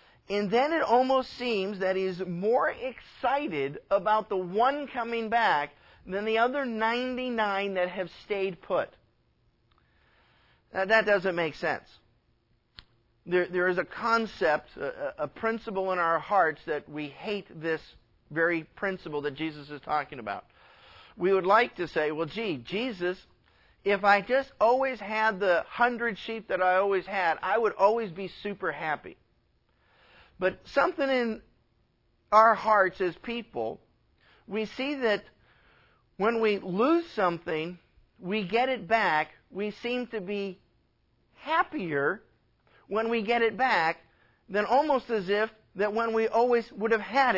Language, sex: English, male